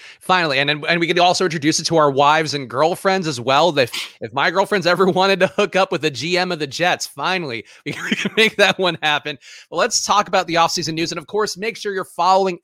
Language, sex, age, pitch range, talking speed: English, male, 30-49, 150-195 Hz, 240 wpm